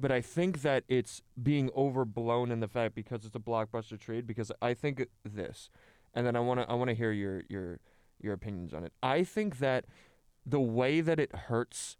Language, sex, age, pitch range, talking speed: English, male, 20-39, 115-135 Hz, 210 wpm